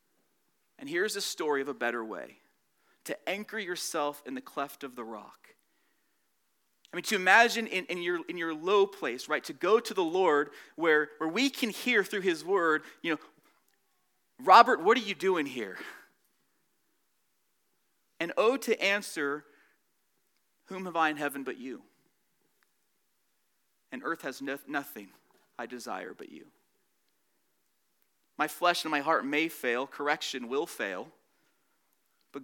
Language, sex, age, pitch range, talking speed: English, male, 30-49, 140-230 Hz, 150 wpm